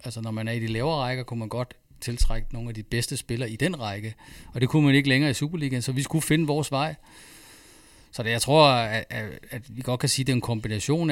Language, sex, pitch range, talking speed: Danish, male, 110-130 Hz, 265 wpm